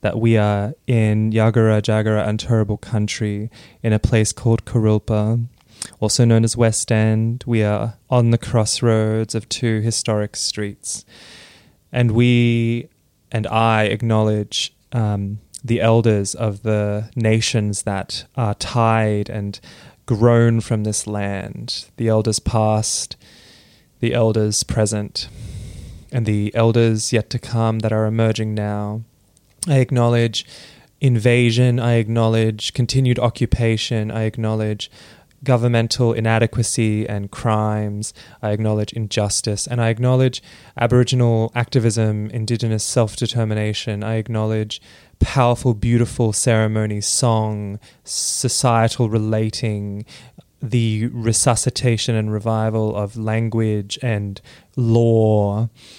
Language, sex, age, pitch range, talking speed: English, male, 20-39, 105-120 Hz, 110 wpm